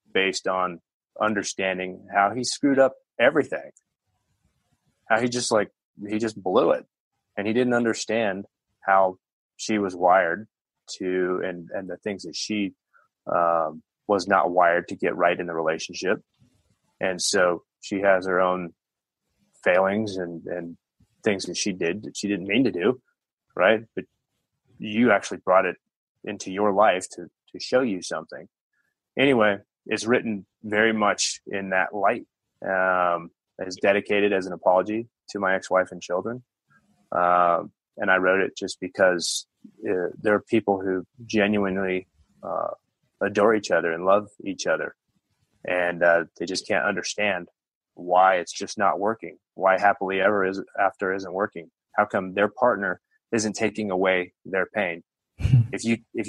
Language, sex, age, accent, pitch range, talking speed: English, male, 20-39, American, 90-110 Hz, 155 wpm